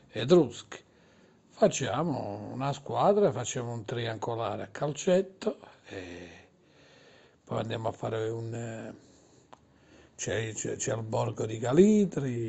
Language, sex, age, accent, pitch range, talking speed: Italian, male, 60-79, native, 115-145 Hz, 105 wpm